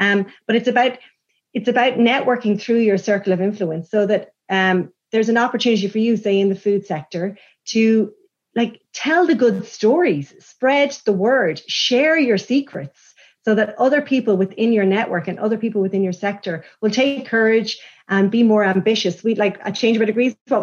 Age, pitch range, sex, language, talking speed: 30-49, 195-230 Hz, female, English, 190 wpm